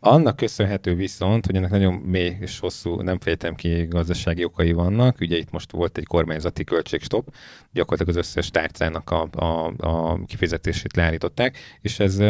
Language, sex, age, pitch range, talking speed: Hungarian, male, 30-49, 85-100 Hz, 160 wpm